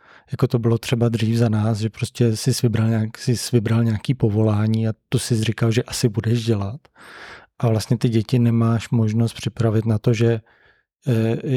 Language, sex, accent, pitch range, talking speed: Czech, male, native, 110-125 Hz, 175 wpm